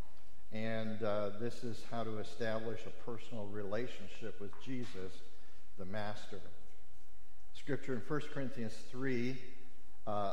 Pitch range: 110-140 Hz